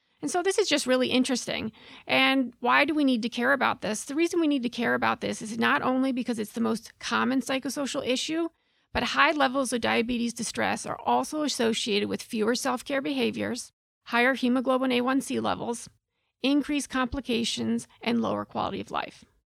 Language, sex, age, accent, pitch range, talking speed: English, female, 40-59, American, 235-280 Hz, 180 wpm